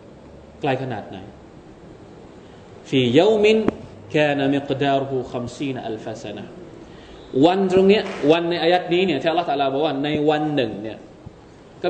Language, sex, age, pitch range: Thai, male, 20-39, 120-155 Hz